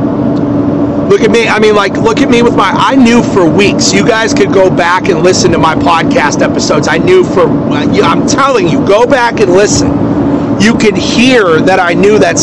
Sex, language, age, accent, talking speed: male, English, 40-59, American, 210 wpm